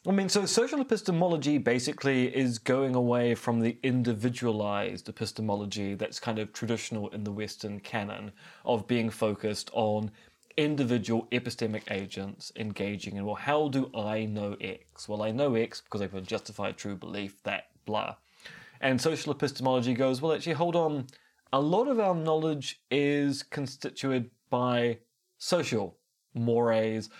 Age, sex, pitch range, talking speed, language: 20-39, male, 105-135 Hz, 145 wpm, English